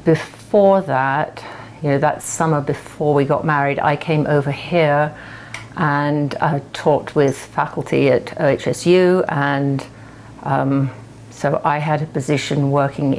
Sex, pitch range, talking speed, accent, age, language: female, 130-150 Hz, 130 wpm, British, 50-69, English